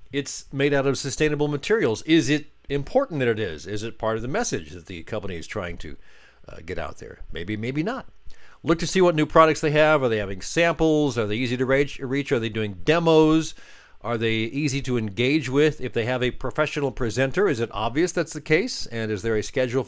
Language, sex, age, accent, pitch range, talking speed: English, male, 50-69, American, 110-150 Hz, 225 wpm